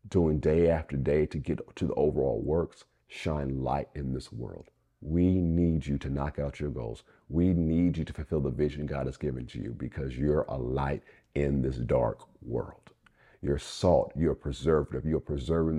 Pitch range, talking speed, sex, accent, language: 75-90 Hz, 185 wpm, male, American, English